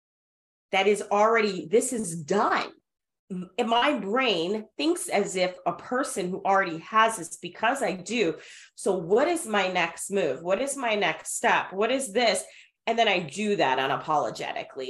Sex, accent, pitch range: female, American, 170-225 Hz